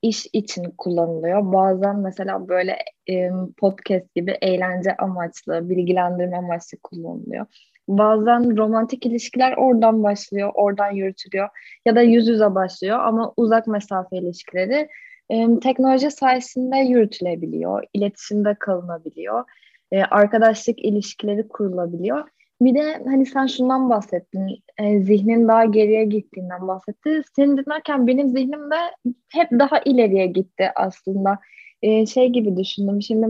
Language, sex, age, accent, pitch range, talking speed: Turkish, female, 10-29, native, 195-245 Hz, 115 wpm